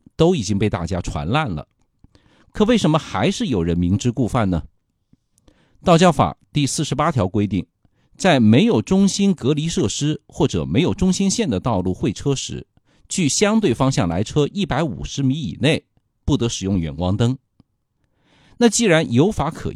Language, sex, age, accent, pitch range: Chinese, male, 50-69, native, 95-150 Hz